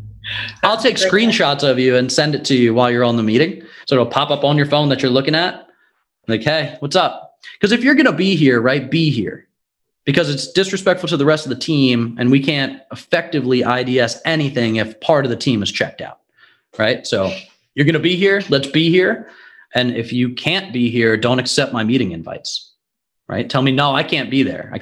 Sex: male